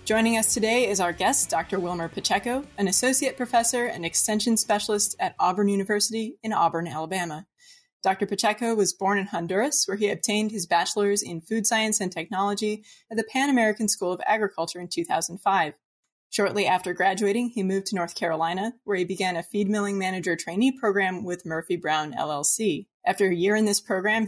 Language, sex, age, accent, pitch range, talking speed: English, female, 20-39, American, 185-220 Hz, 180 wpm